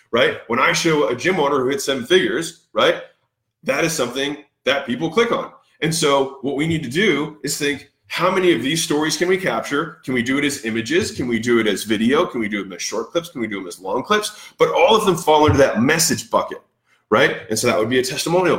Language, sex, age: English, male, 20-39